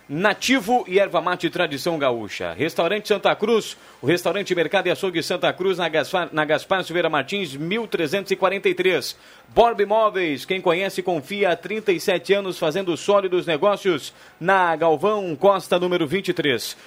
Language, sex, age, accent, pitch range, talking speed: Portuguese, male, 30-49, Brazilian, 150-190 Hz, 155 wpm